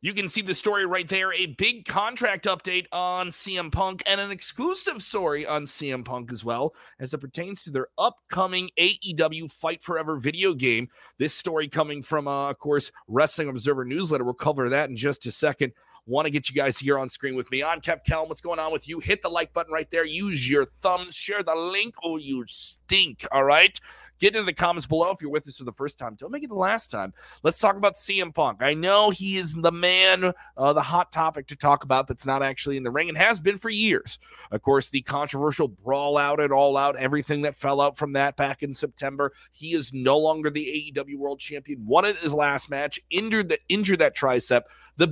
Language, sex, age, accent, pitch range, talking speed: English, male, 30-49, American, 135-180 Hz, 225 wpm